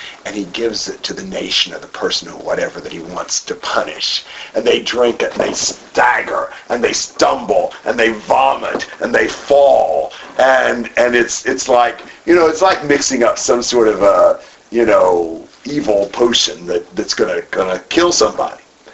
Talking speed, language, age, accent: 185 wpm, English, 50-69, American